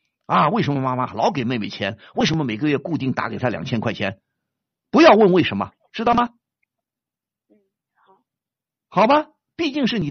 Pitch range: 150-240 Hz